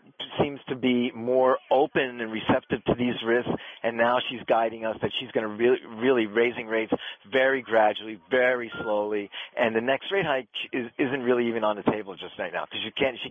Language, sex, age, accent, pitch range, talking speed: English, male, 40-59, American, 110-135 Hz, 195 wpm